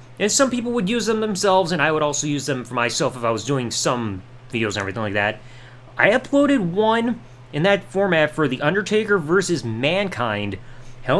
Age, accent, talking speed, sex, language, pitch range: 30-49, American, 200 wpm, male, English, 125-185 Hz